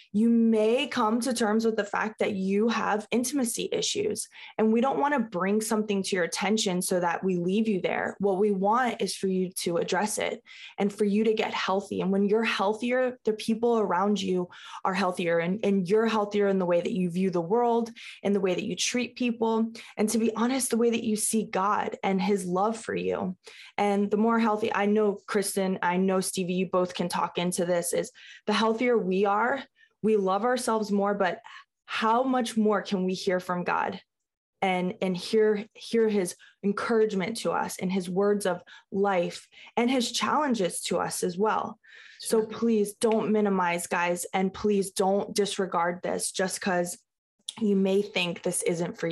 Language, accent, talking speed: English, American, 195 wpm